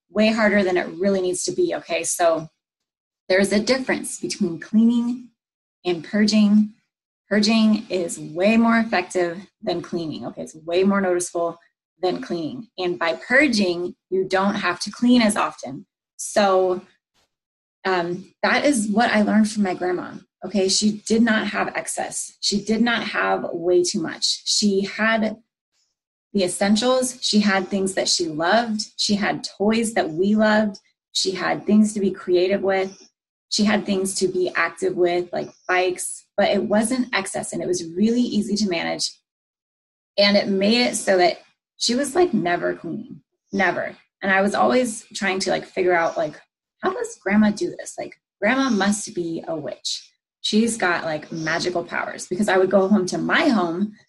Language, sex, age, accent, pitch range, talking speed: English, female, 20-39, American, 180-220 Hz, 170 wpm